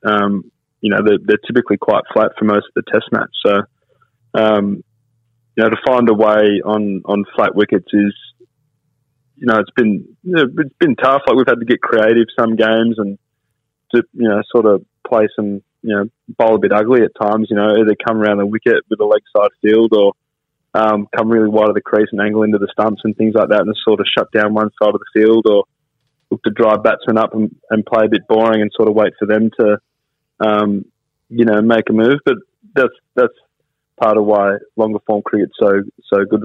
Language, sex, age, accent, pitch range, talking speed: English, male, 20-39, Australian, 105-115 Hz, 225 wpm